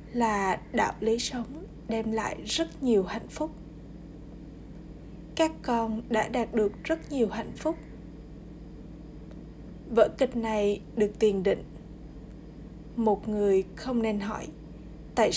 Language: Vietnamese